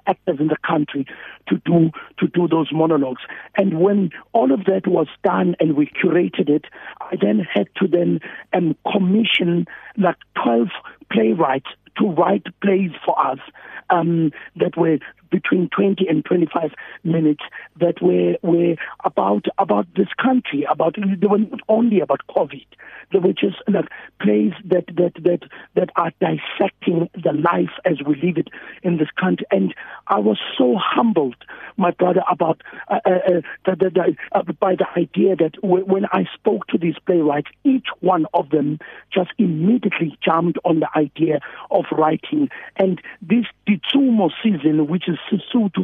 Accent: South African